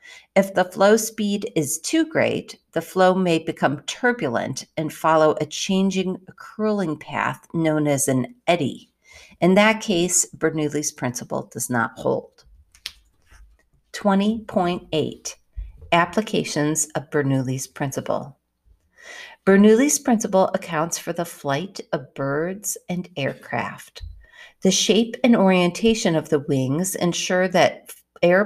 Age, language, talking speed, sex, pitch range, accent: 50-69, English, 115 wpm, female, 155-220 Hz, American